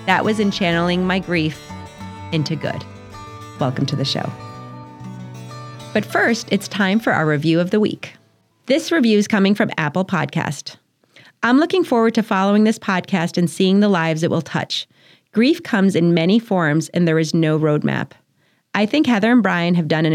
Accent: American